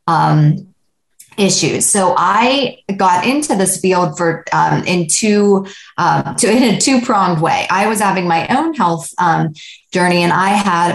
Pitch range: 165-195 Hz